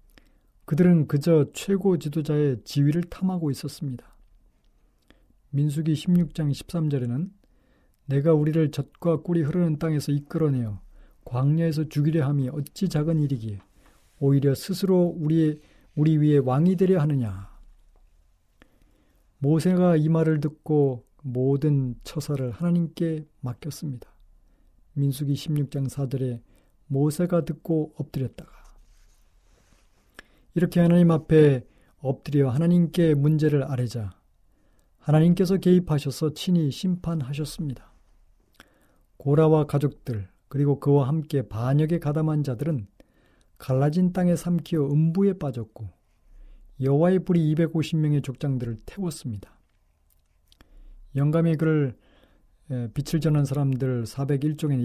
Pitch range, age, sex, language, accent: 130-160 Hz, 40-59, male, Korean, native